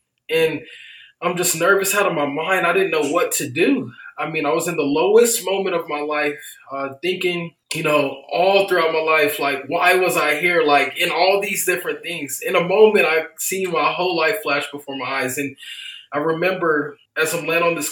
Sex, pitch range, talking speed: male, 140-180 Hz, 215 wpm